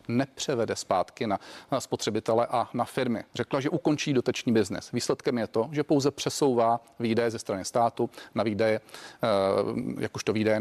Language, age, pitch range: Czech, 40-59, 115-130 Hz